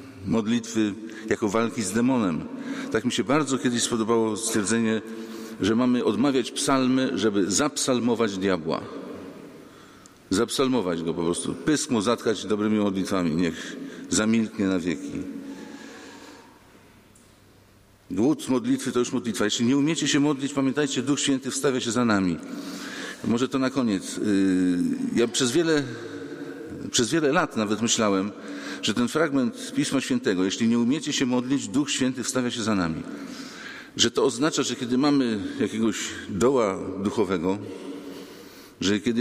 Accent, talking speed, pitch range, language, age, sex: Polish, 135 wpm, 105-135 Hz, English, 50-69, male